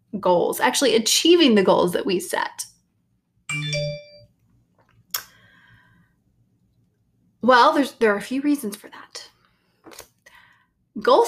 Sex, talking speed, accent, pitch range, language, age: female, 95 wpm, American, 195-295 Hz, English, 20-39